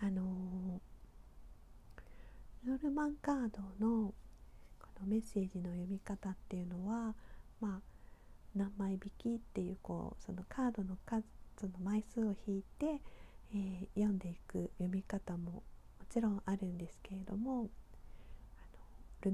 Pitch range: 190-235 Hz